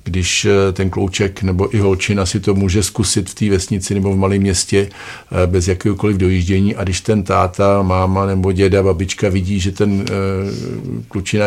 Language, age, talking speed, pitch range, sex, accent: Czech, 50-69, 175 wpm, 95-105 Hz, male, native